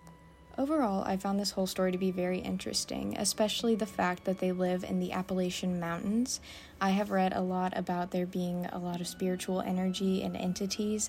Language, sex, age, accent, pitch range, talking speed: English, female, 10-29, American, 185-210 Hz, 190 wpm